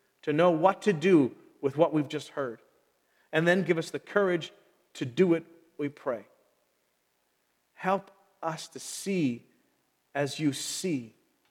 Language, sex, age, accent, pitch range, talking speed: English, male, 40-59, American, 140-205 Hz, 145 wpm